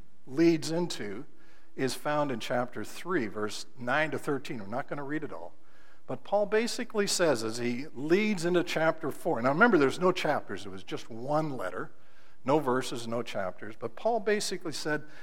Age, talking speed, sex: 60-79, 180 wpm, male